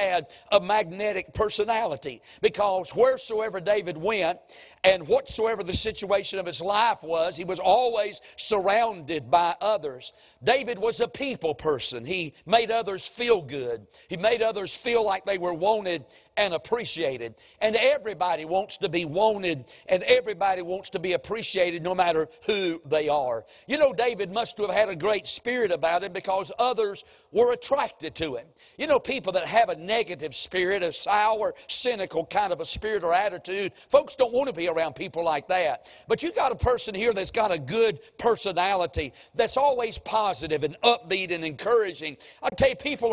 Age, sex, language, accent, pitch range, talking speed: 50-69, male, English, American, 180-230 Hz, 175 wpm